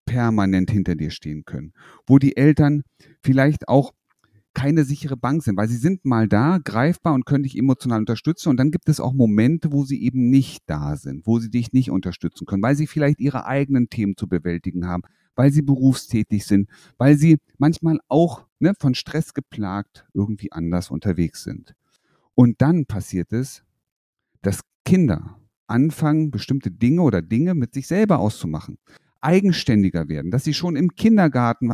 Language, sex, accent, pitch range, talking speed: German, male, German, 105-145 Hz, 170 wpm